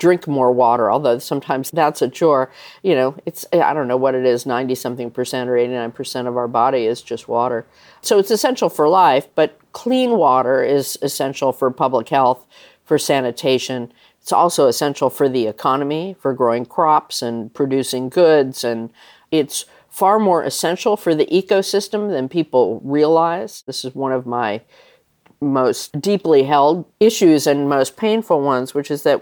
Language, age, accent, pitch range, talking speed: English, 50-69, American, 130-165 Hz, 170 wpm